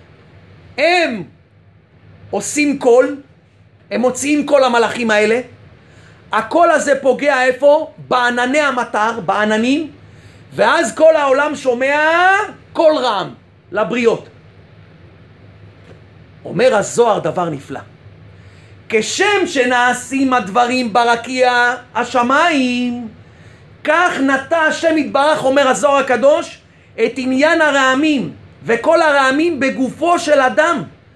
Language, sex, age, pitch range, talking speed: Hebrew, male, 40-59, 230-290 Hz, 90 wpm